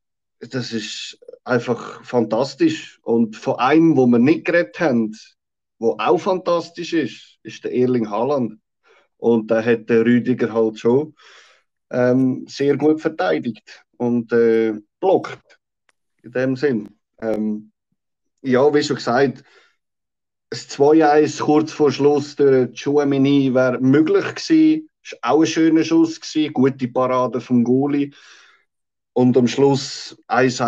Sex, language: male, German